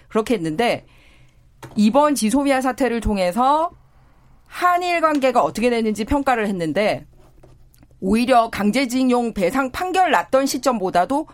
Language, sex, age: Korean, female, 40-59